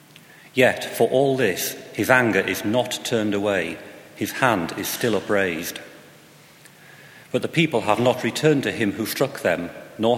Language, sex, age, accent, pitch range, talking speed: English, male, 40-59, British, 105-130 Hz, 160 wpm